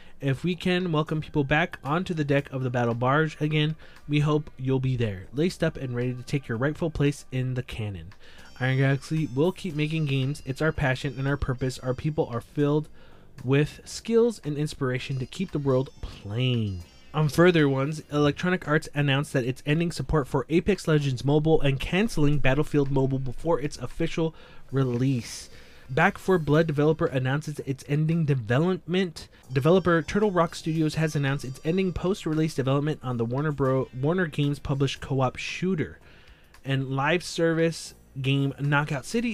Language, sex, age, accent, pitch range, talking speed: English, male, 20-39, American, 135-165 Hz, 170 wpm